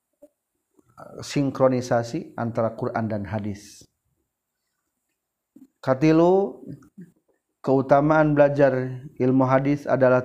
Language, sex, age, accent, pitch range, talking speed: Indonesian, male, 40-59, native, 115-140 Hz, 65 wpm